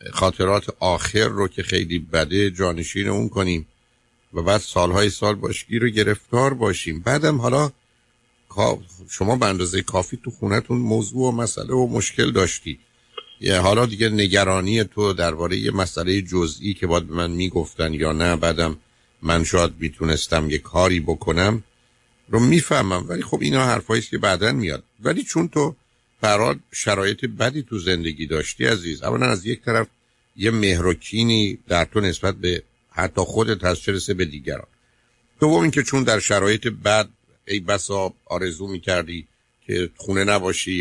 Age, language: 50-69, Persian